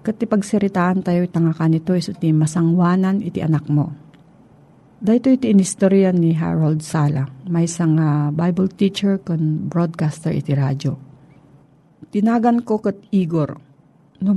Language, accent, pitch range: Filipino, native, 155-195 Hz